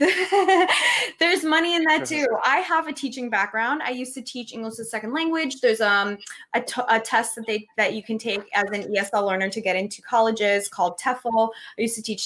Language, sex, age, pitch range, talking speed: English, female, 20-39, 210-275 Hz, 220 wpm